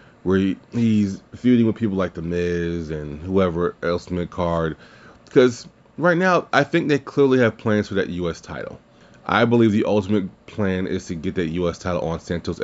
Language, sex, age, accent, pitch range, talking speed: English, male, 30-49, American, 90-115 Hz, 185 wpm